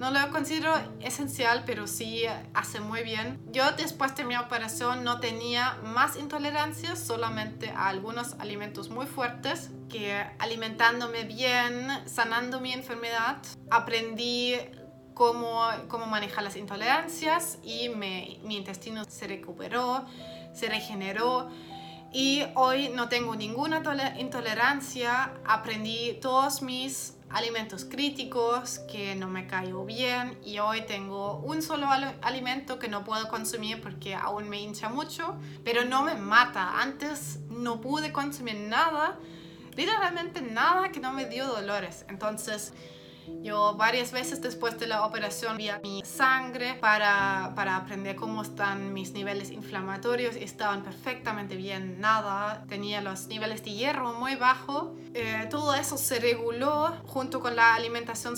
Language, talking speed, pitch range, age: Spanish, 135 wpm, 205-260 Hz, 20-39